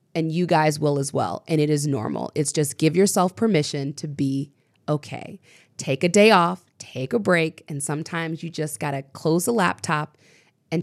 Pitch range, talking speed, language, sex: 150-200 Hz, 190 wpm, English, female